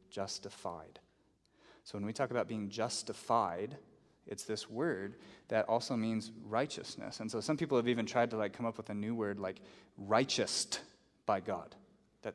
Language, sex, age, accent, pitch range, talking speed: English, male, 30-49, American, 110-135 Hz, 170 wpm